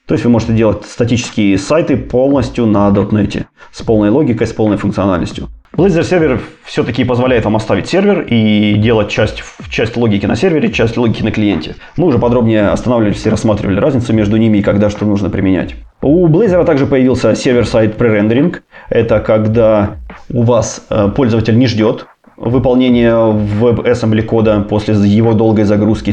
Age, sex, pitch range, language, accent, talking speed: 20-39, male, 105-120 Hz, Russian, native, 155 wpm